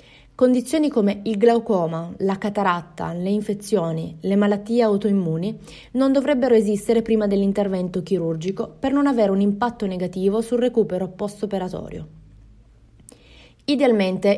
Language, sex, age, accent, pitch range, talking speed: Italian, female, 20-39, native, 180-230 Hz, 115 wpm